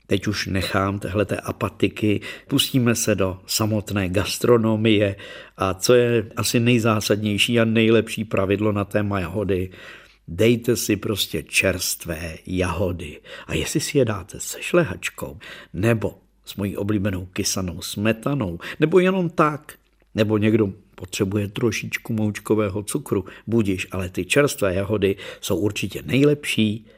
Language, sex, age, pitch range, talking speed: Czech, male, 50-69, 95-120 Hz, 125 wpm